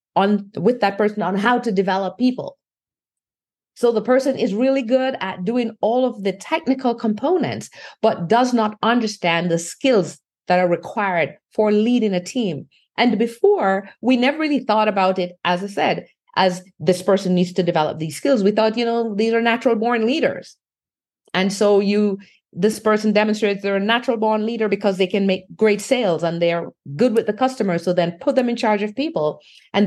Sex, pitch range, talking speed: female, 180-225 Hz, 190 wpm